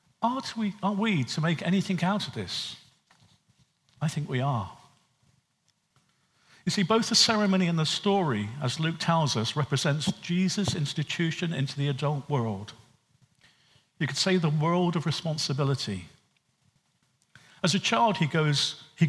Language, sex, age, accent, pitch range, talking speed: English, male, 50-69, British, 140-190 Hz, 140 wpm